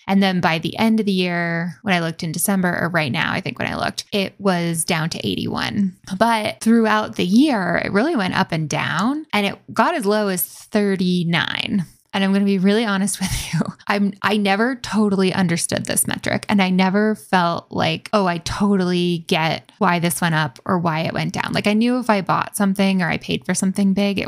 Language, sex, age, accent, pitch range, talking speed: English, female, 10-29, American, 175-215 Hz, 225 wpm